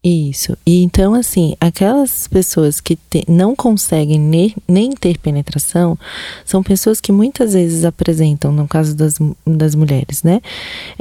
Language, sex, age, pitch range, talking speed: Portuguese, female, 30-49, 155-180 Hz, 135 wpm